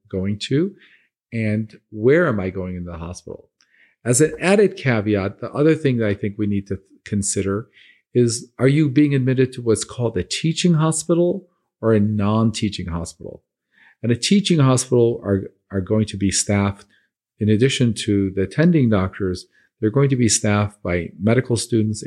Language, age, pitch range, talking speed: English, 40-59, 100-135 Hz, 170 wpm